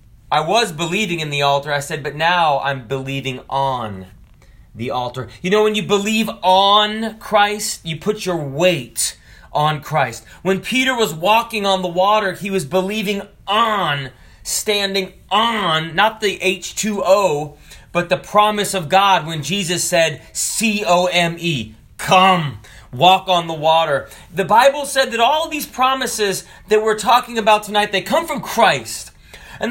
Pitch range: 150-215 Hz